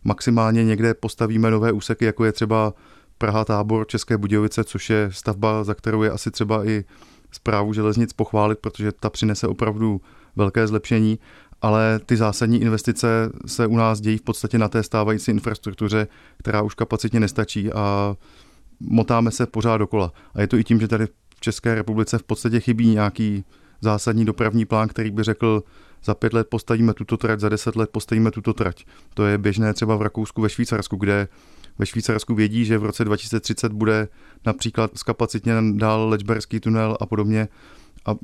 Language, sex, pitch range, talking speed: Czech, male, 105-115 Hz, 175 wpm